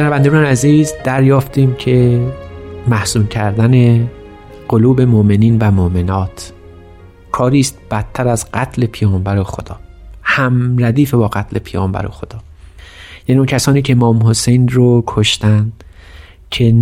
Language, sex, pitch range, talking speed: Persian, male, 100-130 Hz, 120 wpm